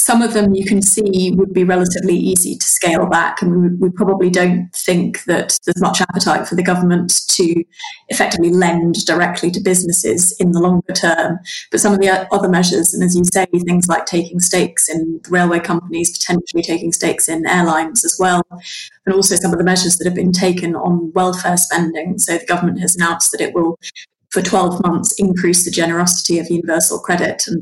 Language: English